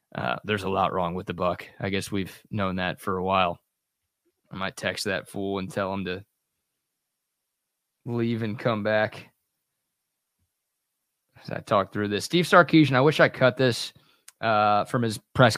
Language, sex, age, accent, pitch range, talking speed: English, male, 20-39, American, 100-135 Hz, 175 wpm